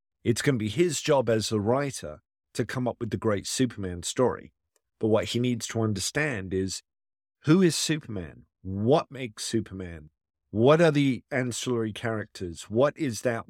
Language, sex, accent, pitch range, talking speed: English, male, British, 100-145 Hz, 170 wpm